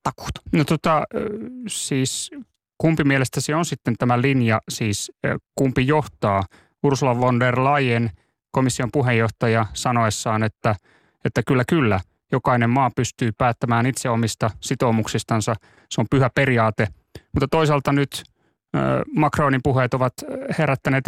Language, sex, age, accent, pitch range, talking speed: Finnish, male, 30-49, native, 115-145 Hz, 115 wpm